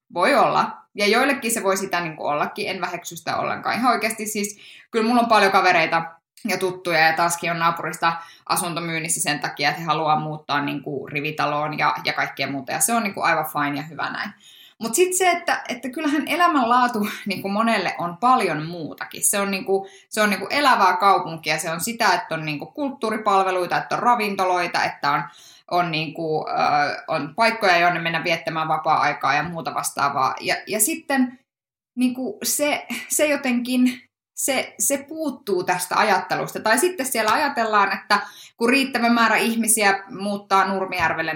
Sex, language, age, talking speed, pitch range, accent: female, Finnish, 20-39, 170 wpm, 165-240 Hz, native